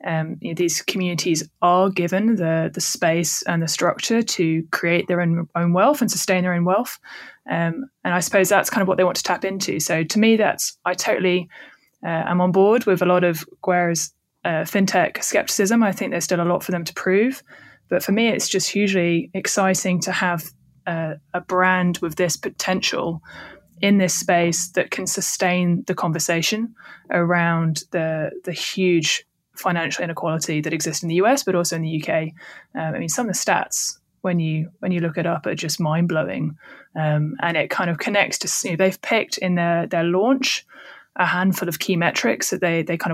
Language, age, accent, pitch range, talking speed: English, 20-39, British, 170-190 Hz, 200 wpm